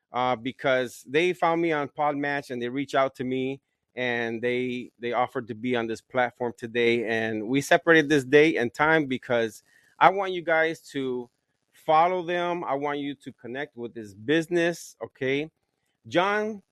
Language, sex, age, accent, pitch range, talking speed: English, male, 30-49, American, 130-165 Hz, 170 wpm